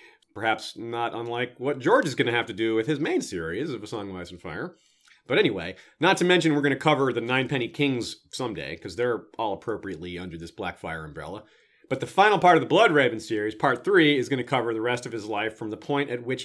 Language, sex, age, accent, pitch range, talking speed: English, male, 40-59, American, 110-155 Hz, 245 wpm